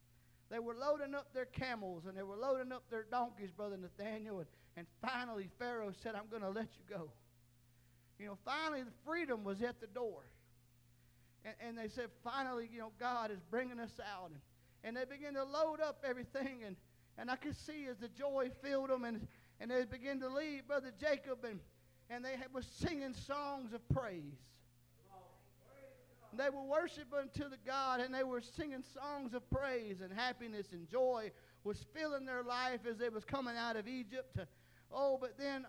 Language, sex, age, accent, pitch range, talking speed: English, male, 40-59, American, 205-270 Hz, 190 wpm